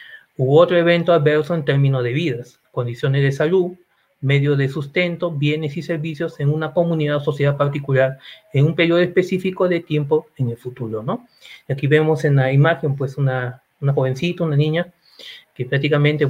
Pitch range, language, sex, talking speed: 130-160 Hz, Spanish, male, 175 wpm